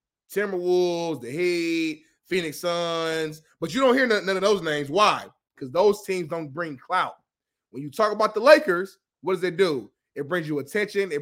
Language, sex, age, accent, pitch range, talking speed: English, male, 20-39, American, 160-215 Hz, 195 wpm